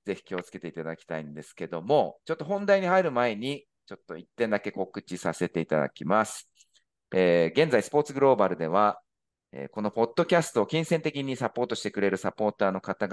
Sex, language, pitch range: male, Japanese, 100-145 Hz